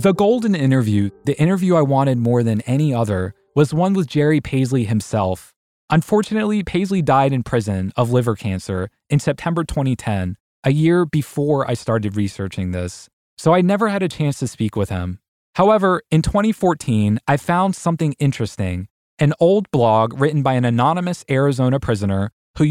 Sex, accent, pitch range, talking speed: male, American, 110-160 Hz, 165 wpm